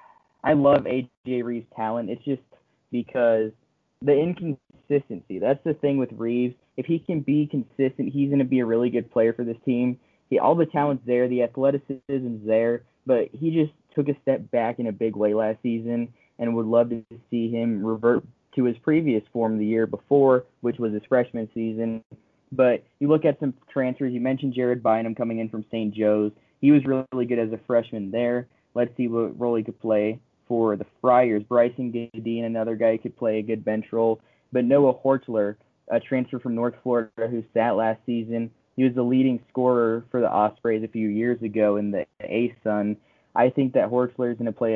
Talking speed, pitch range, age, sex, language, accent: 200 wpm, 110-130 Hz, 20-39, male, English, American